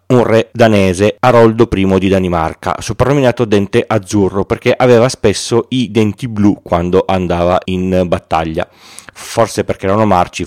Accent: native